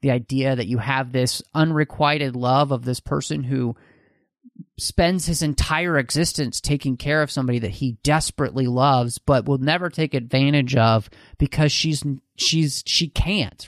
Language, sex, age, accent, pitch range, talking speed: English, male, 30-49, American, 130-165 Hz, 155 wpm